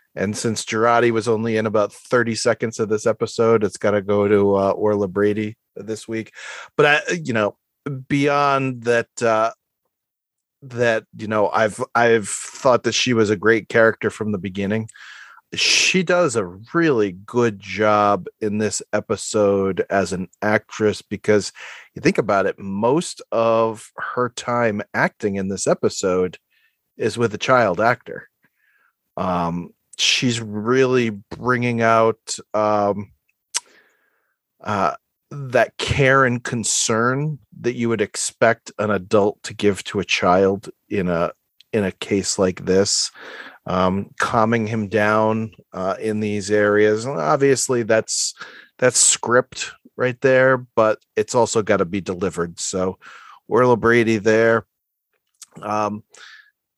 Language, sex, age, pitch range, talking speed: English, male, 40-59, 105-120 Hz, 135 wpm